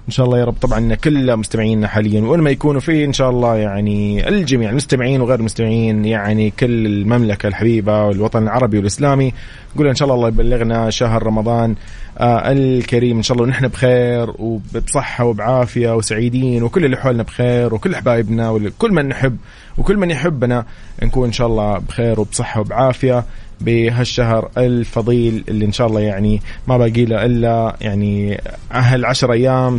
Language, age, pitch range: English, 30-49, 110-130 Hz